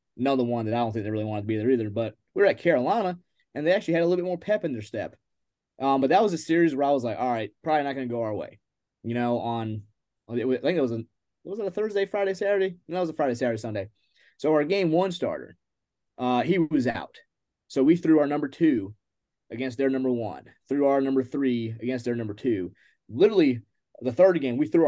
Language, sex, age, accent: English, male, 20-39, American